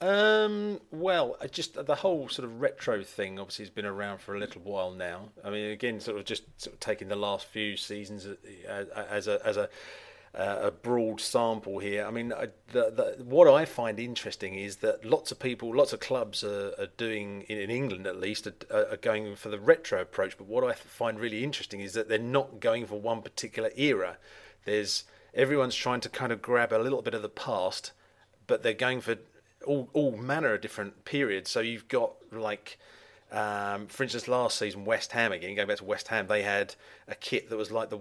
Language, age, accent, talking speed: English, 40-59, British, 215 wpm